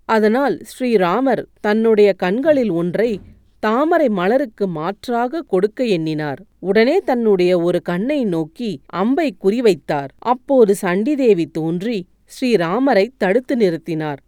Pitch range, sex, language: 175-260 Hz, female, Tamil